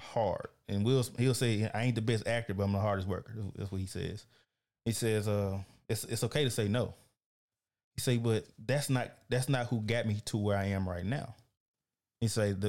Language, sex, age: English, male, 20-39